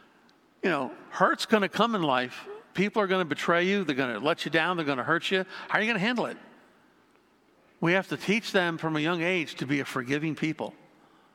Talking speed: 245 wpm